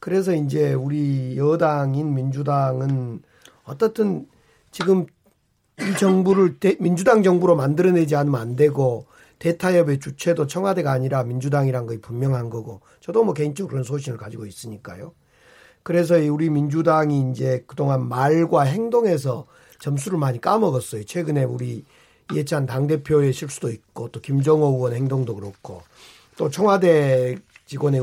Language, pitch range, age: Korean, 135-185 Hz, 40-59